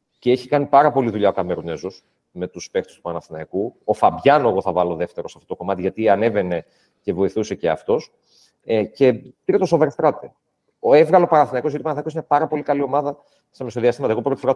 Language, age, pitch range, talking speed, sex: Greek, 30-49, 110-150 Hz, 220 wpm, male